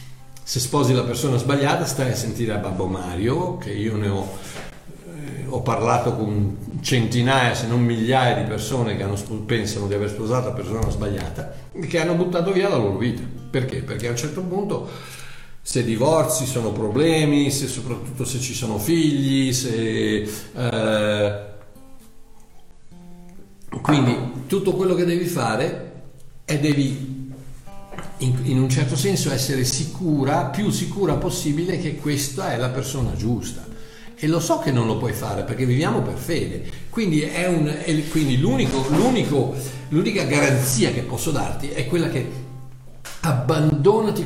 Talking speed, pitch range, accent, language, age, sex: 150 wpm, 115-155 Hz, native, Italian, 50-69, male